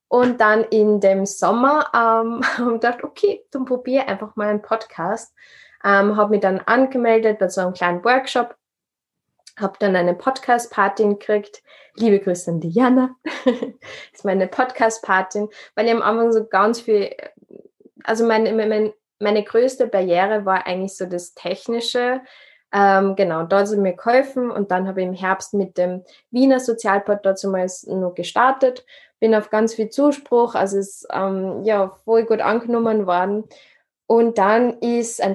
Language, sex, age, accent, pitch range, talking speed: German, female, 20-39, German, 195-240 Hz, 160 wpm